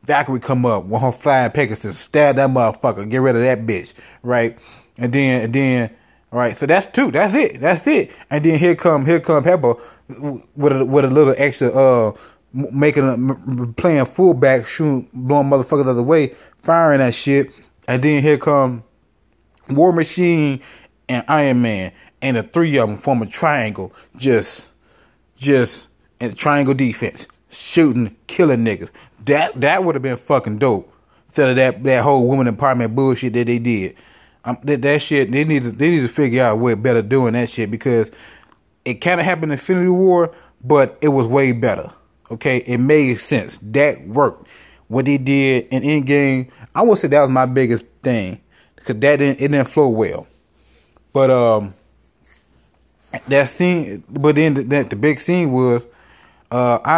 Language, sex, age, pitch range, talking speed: English, male, 20-39, 120-145 Hz, 175 wpm